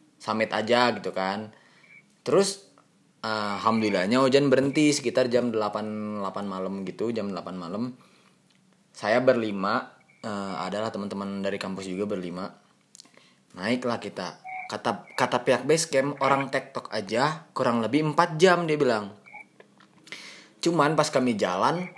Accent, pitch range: native, 115-150 Hz